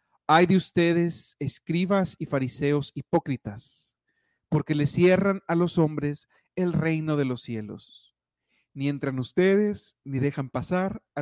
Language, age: Spanish, 40-59